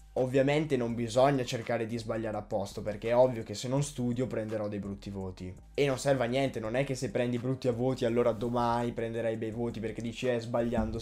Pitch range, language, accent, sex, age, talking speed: 105-140 Hz, Italian, native, male, 10-29, 225 wpm